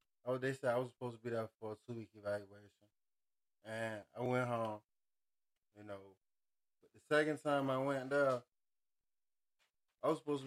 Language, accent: English, American